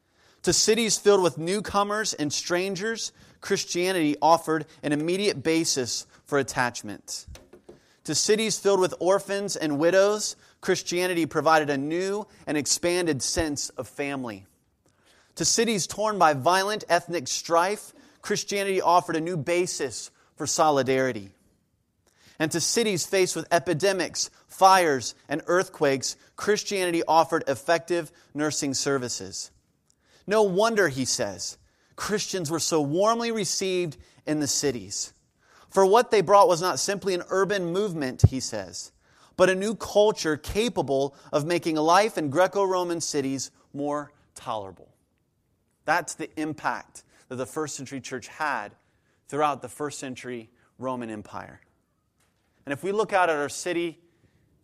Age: 30-49